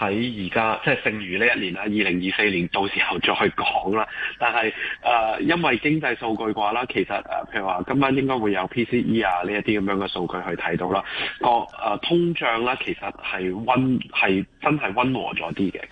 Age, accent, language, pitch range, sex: 20-39, native, Chinese, 95-120 Hz, male